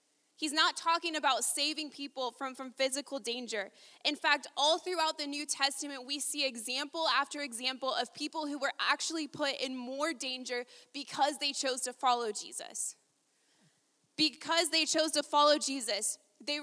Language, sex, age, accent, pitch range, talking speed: English, female, 20-39, American, 255-305 Hz, 160 wpm